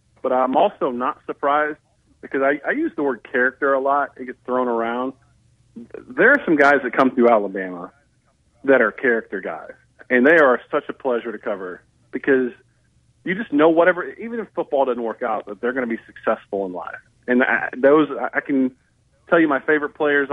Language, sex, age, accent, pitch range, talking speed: English, male, 40-59, American, 120-155 Hz, 205 wpm